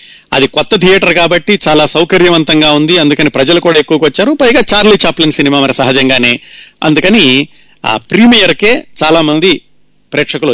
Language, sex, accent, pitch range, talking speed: Telugu, male, native, 140-175 Hz, 135 wpm